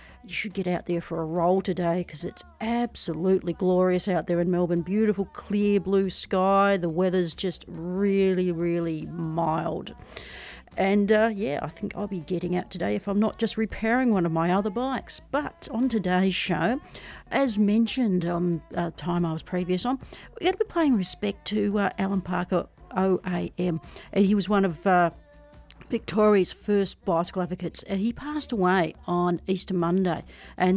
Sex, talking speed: female, 175 wpm